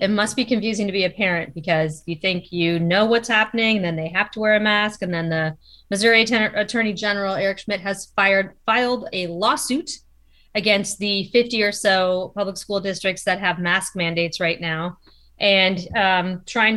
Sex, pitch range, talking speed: female, 180-215 Hz, 190 wpm